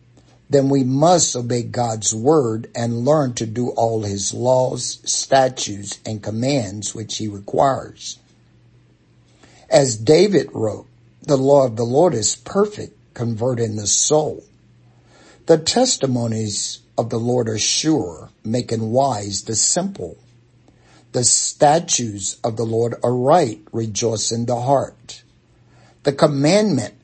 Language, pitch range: English, 110-135 Hz